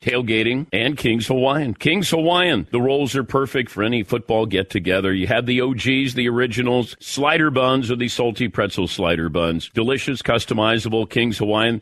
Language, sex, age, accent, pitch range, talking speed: English, male, 50-69, American, 110-140 Hz, 160 wpm